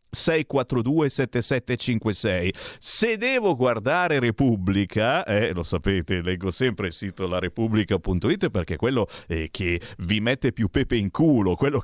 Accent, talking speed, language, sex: native, 130 wpm, Italian, male